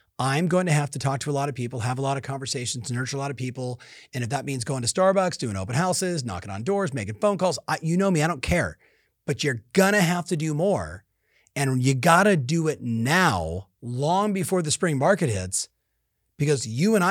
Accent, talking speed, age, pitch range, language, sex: American, 235 wpm, 30-49, 125-175 Hz, English, male